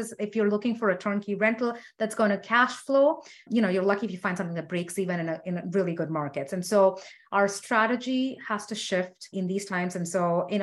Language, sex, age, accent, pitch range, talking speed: English, female, 30-49, Indian, 180-210 Hz, 235 wpm